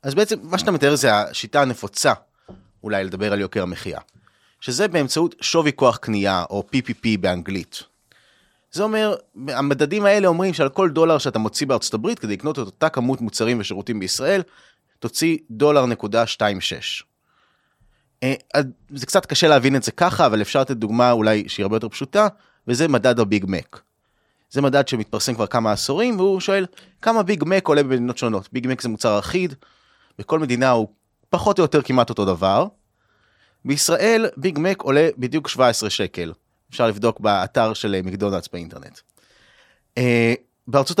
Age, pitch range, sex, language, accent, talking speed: 30-49, 110-160 Hz, male, Hebrew, native, 135 wpm